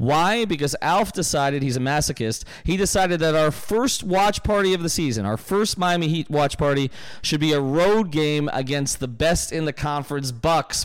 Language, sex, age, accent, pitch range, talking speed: English, male, 40-59, American, 125-165 Hz, 185 wpm